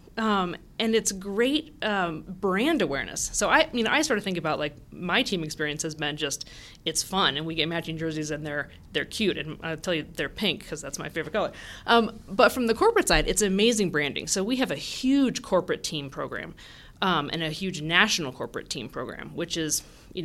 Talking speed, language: 215 wpm, English